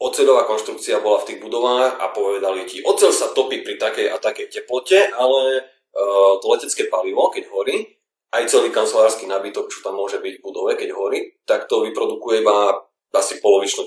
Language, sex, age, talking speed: Slovak, male, 30-49, 180 wpm